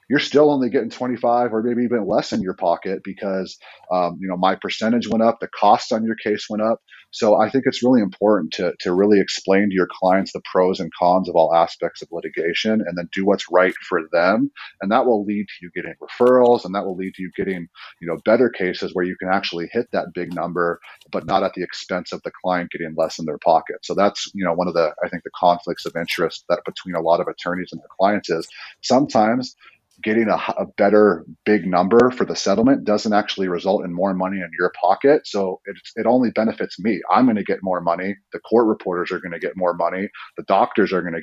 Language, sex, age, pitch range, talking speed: English, male, 30-49, 90-105 Hz, 240 wpm